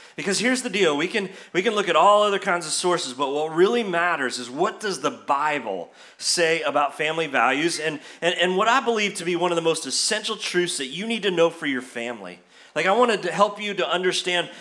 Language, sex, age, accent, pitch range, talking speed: English, male, 30-49, American, 160-200 Hz, 240 wpm